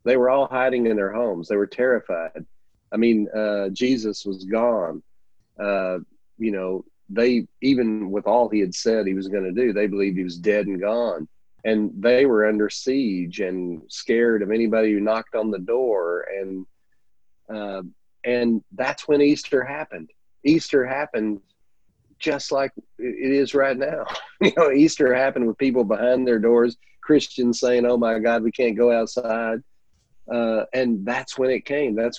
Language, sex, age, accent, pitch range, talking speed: English, male, 40-59, American, 105-130 Hz, 170 wpm